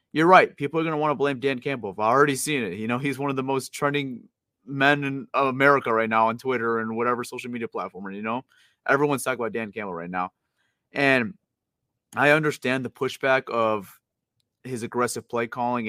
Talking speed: 205 wpm